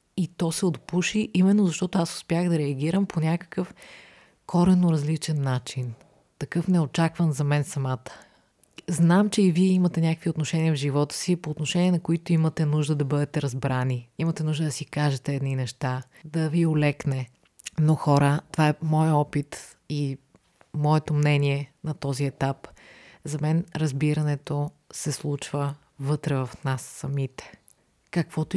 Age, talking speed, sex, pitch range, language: 30-49, 150 wpm, female, 135-160 Hz, Bulgarian